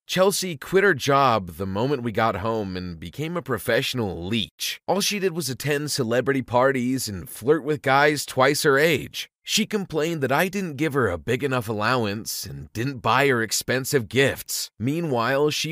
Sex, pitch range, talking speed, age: male, 115-160 Hz, 180 wpm, 30-49